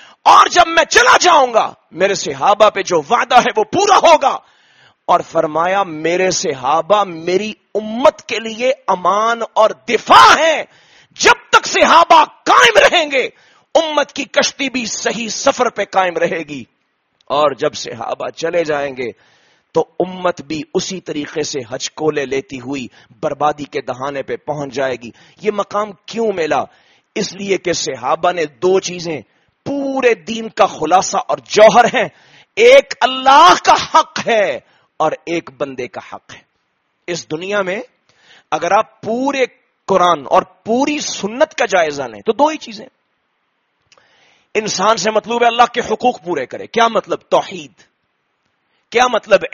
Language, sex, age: English, male, 30-49